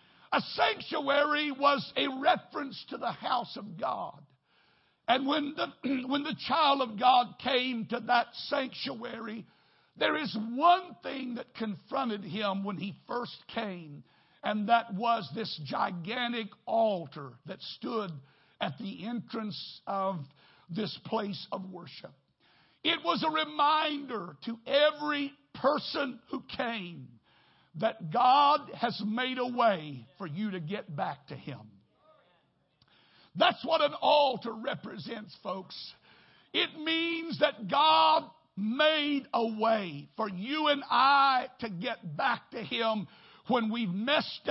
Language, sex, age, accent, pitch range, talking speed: English, male, 60-79, American, 205-285 Hz, 130 wpm